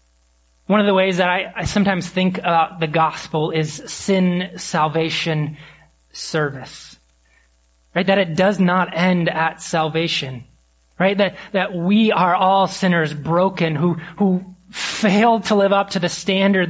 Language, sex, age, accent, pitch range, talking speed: English, male, 30-49, American, 150-185 Hz, 145 wpm